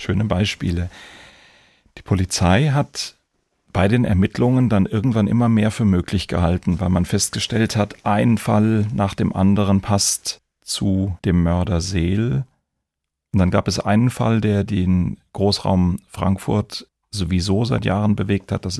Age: 40-59